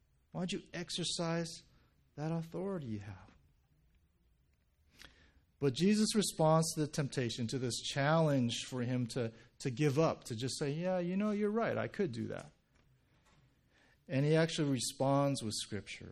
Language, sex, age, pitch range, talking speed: English, male, 40-59, 115-190 Hz, 155 wpm